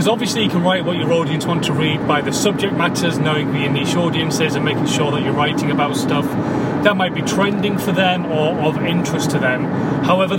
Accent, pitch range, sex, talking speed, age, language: British, 145-180 Hz, male, 220 wpm, 30-49, English